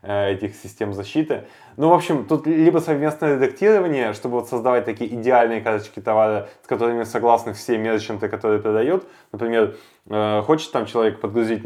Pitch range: 105-120 Hz